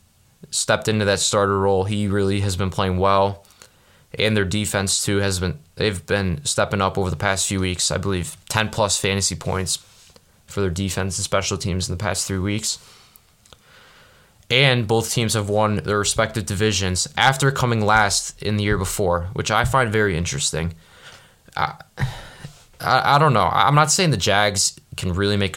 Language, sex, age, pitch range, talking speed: English, male, 20-39, 95-105 Hz, 175 wpm